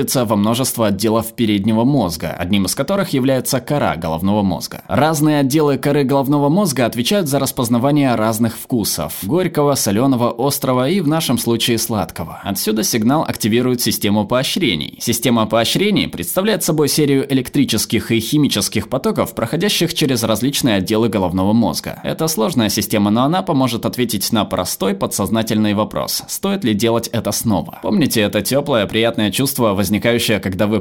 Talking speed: 145 wpm